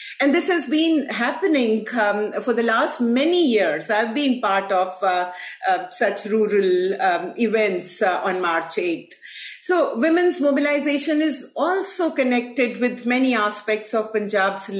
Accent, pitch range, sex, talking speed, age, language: Indian, 200-260 Hz, female, 145 wpm, 50-69, English